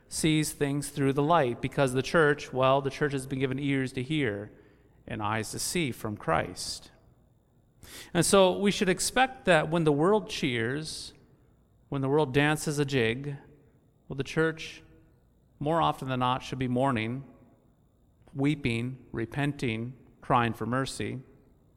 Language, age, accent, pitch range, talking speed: English, 40-59, American, 125-170 Hz, 150 wpm